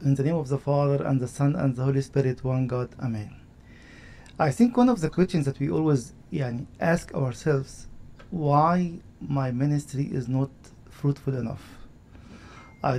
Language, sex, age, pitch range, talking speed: English, male, 50-69, 135-170 Hz, 160 wpm